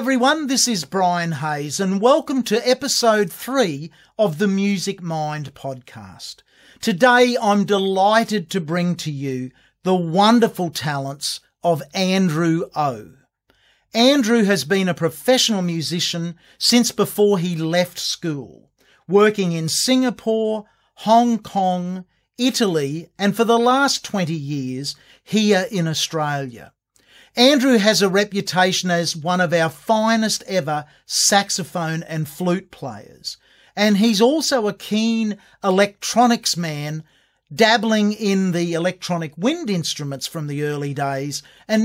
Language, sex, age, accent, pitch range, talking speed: English, male, 40-59, Australian, 160-220 Hz, 125 wpm